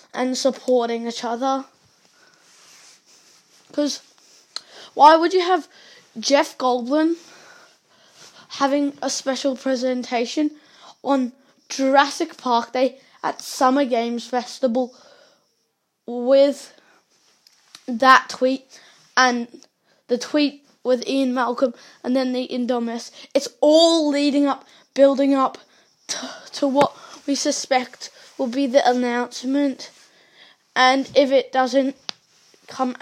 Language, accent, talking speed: English, British, 100 wpm